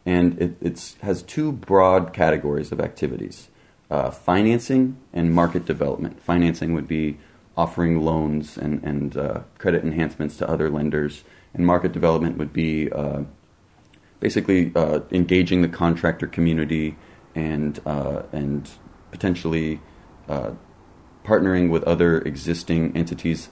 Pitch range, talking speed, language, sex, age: 75-90 Hz, 125 wpm, English, male, 30-49